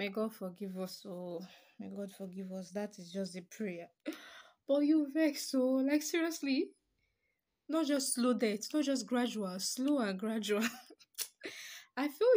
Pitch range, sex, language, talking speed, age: 185-245 Hz, female, English, 160 wpm, 20-39